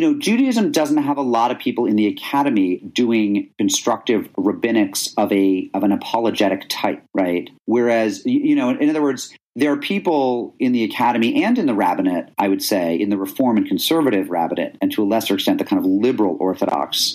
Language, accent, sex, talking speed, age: English, American, male, 195 wpm, 40-59